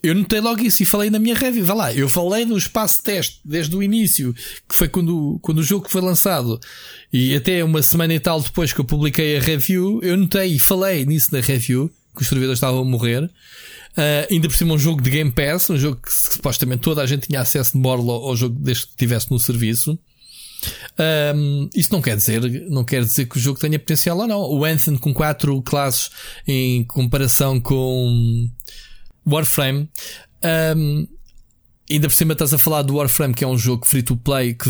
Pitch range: 130-165 Hz